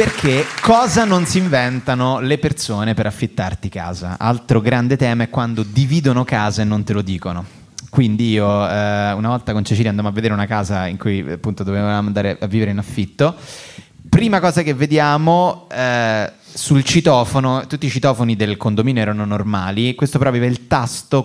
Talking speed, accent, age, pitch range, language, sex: 175 wpm, native, 30-49, 105-140 Hz, Italian, male